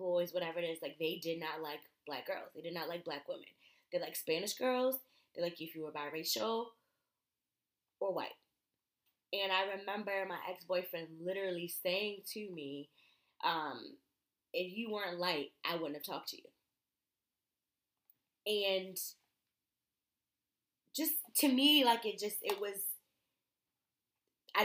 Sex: female